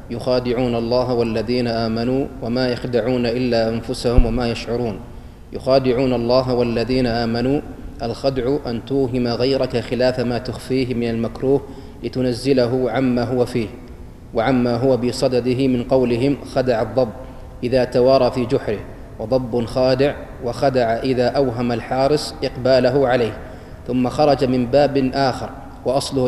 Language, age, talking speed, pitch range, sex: Arabic, 30-49, 120 wpm, 125-135 Hz, male